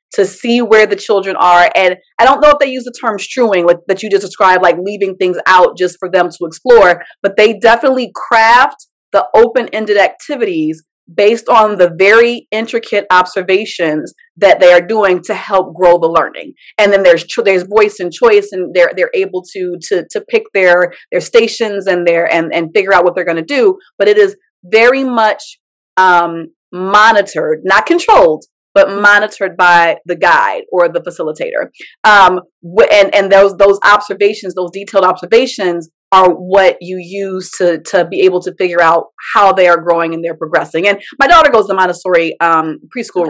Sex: female